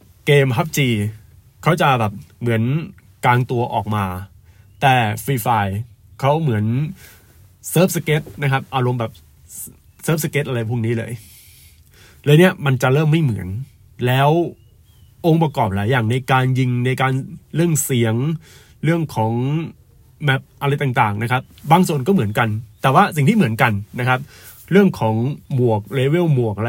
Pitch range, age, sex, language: 110-145 Hz, 20-39, male, Thai